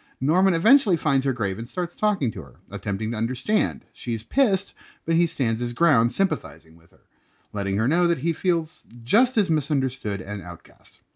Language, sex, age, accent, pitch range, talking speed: English, male, 30-49, American, 110-165 Hz, 185 wpm